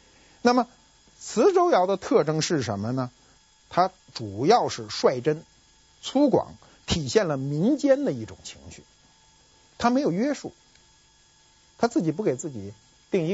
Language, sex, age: Chinese, male, 50-69